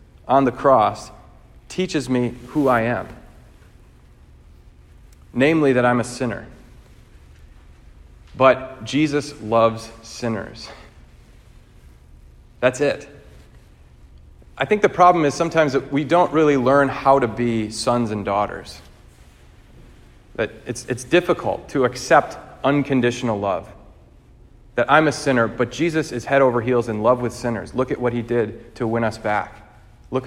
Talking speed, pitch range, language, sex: 135 wpm, 115-145 Hz, English, male